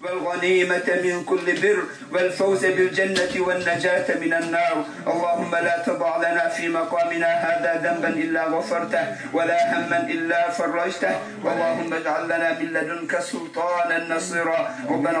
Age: 50-69